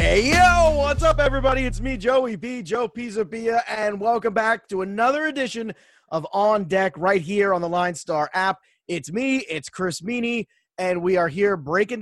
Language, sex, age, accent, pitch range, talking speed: English, male, 30-49, American, 165-210 Hz, 180 wpm